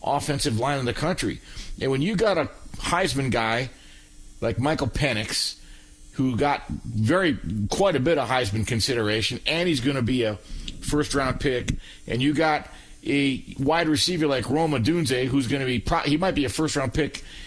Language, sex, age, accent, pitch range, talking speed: English, male, 50-69, American, 115-160 Hz, 180 wpm